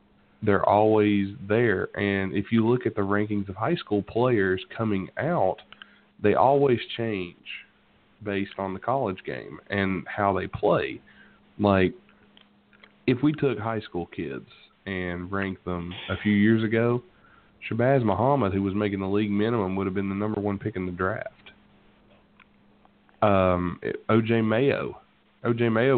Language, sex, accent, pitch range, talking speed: English, male, American, 95-110 Hz, 150 wpm